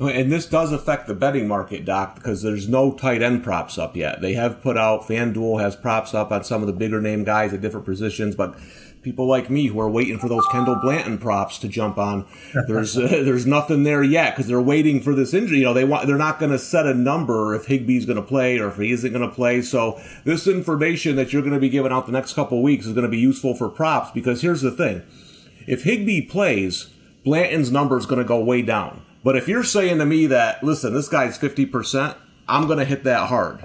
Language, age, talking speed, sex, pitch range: English, 30-49, 250 wpm, male, 115-140 Hz